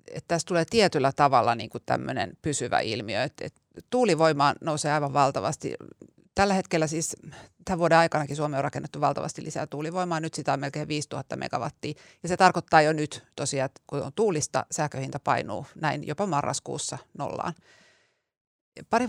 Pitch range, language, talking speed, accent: 150-175 Hz, Finnish, 155 wpm, native